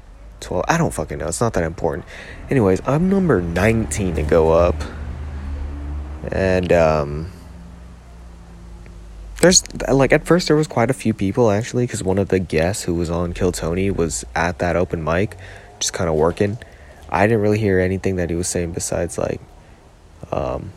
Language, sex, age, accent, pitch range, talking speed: English, male, 20-39, American, 85-100 Hz, 175 wpm